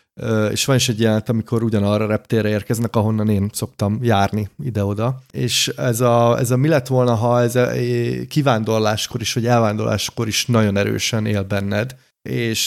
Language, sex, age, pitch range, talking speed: Hungarian, male, 30-49, 110-130 Hz, 170 wpm